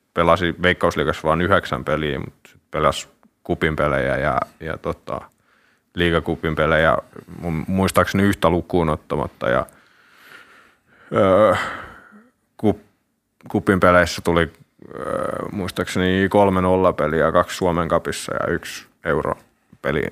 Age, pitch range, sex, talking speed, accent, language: 30-49, 85-95 Hz, male, 90 wpm, native, Finnish